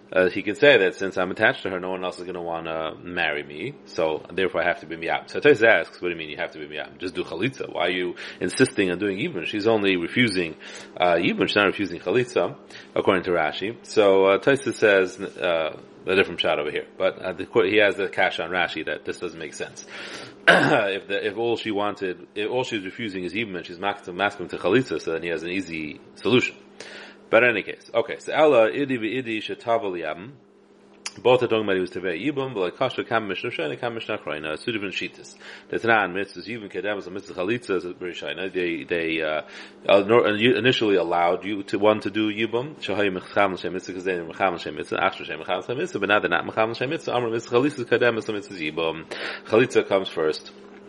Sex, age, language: male, 30-49, English